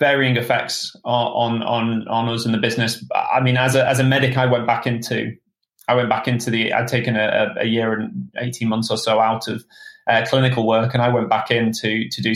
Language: English